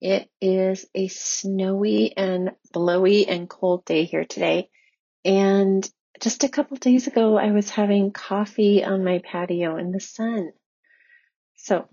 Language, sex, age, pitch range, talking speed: English, female, 30-49, 175-205 Hz, 145 wpm